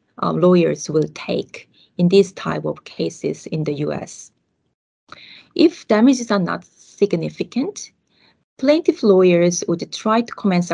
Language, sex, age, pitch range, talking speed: English, female, 30-49, 160-200 Hz, 125 wpm